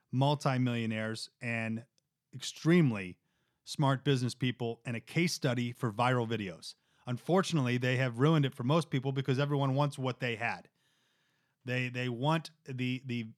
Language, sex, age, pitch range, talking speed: English, male, 30-49, 120-150 Hz, 145 wpm